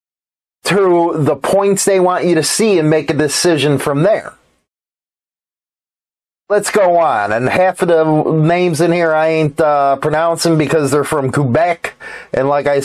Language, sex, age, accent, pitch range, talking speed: English, male, 30-49, American, 140-165 Hz, 165 wpm